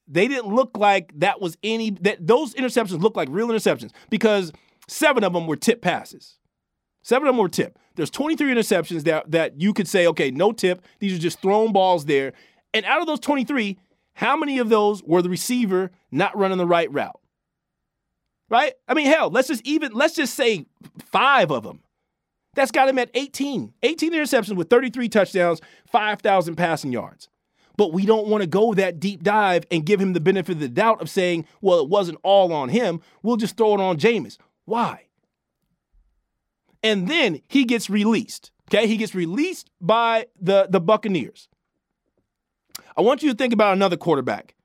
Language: English